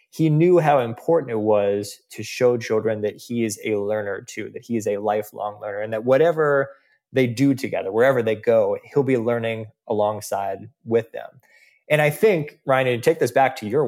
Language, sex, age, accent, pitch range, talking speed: English, male, 20-39, American, 110-140 Hz, 200 wpm